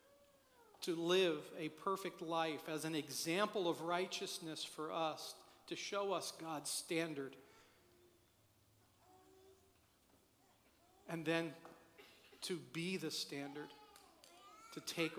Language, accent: English, American